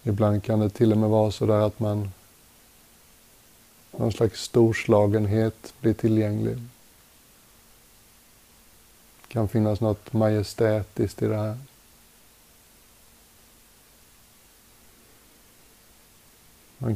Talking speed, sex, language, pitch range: 90 wpm, male, Swedish, 105-115 Hz